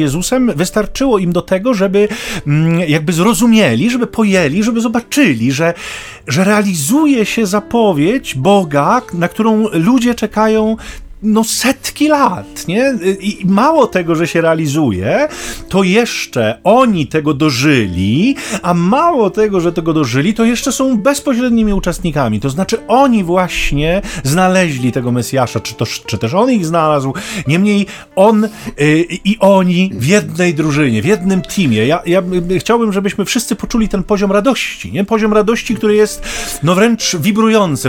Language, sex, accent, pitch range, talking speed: Polish, male, native, 160-220 Hz, 140 wpm